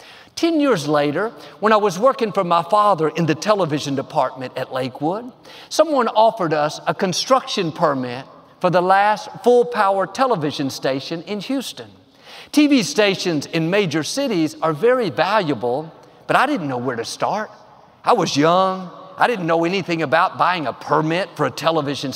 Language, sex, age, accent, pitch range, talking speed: English, male, 50-69, American, 160-235 Hz, 160 wpm